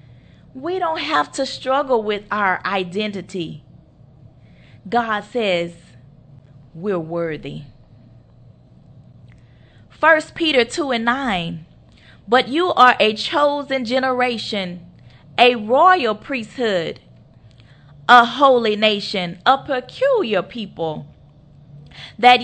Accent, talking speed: American, 90 wpm